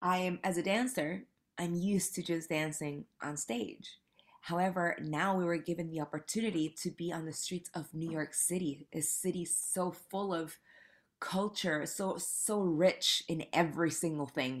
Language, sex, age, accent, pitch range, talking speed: English, female, 20-39, American, 150-180 Hz, 170 wpm